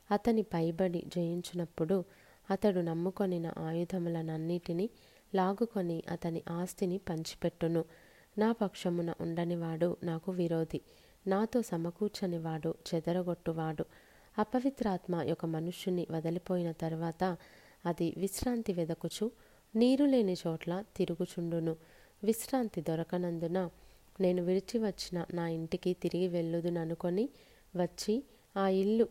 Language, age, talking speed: Telugu, 30-49, 80 wpm